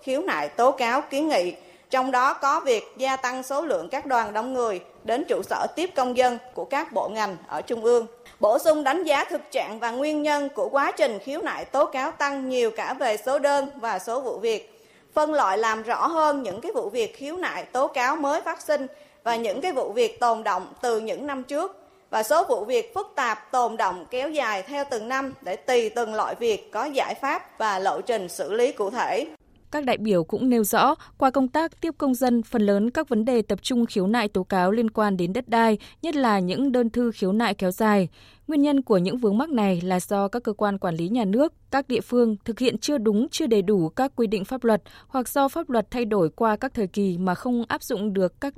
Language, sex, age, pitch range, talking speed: Vietnamese, female, 20-39, 220-290 Hz, 240 wpm